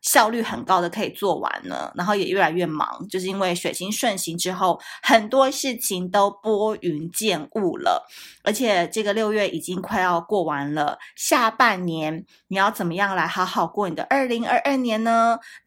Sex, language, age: female, Chinese, 20-39